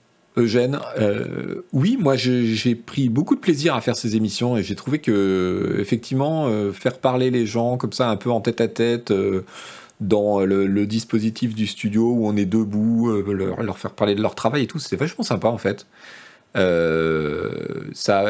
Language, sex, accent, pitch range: French, male, French, 105-135 Hz